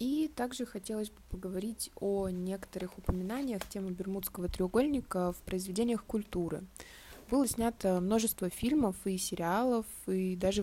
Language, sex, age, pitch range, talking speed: Russian, female, 20-39, 180-220 Hz, 125 wpm